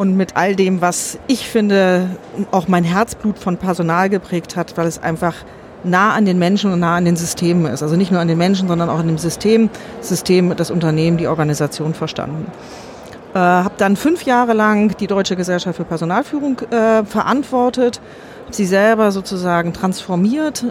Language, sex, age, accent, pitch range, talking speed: German, female, 40-59, German, 185-225 Hz, 180 wpm